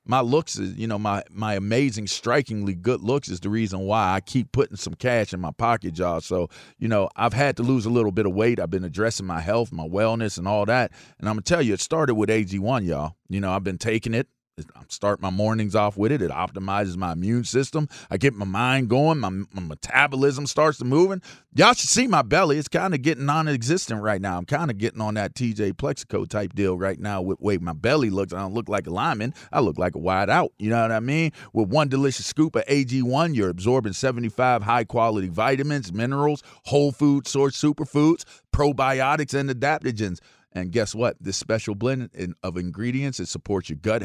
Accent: American